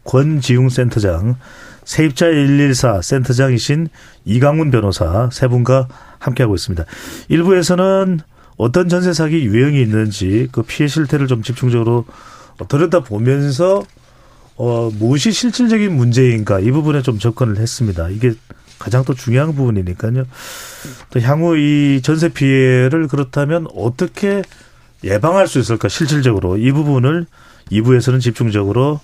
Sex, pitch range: male, 115-150 Hz